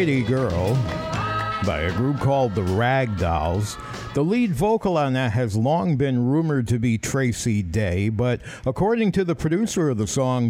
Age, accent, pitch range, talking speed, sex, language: 60-79, American, 110-140 Hz, 165 wpm, male, English